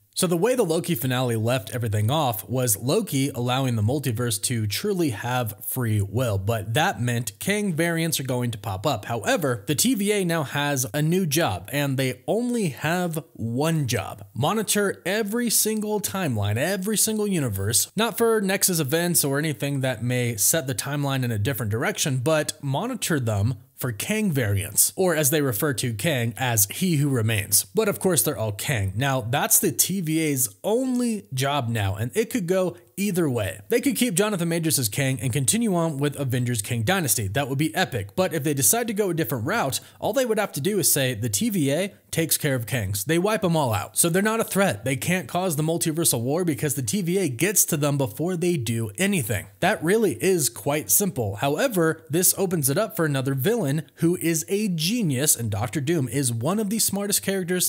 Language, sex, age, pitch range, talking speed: English, male, 30-49, 125-185 Hz, 200 wpm